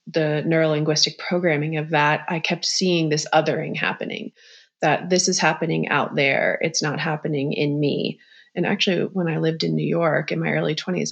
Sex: female